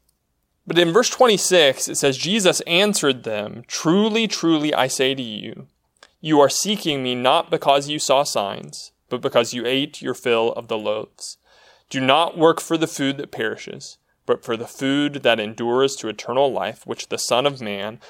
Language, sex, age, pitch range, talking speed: English, male, 20-39, 135-215 Hz, 180 wpm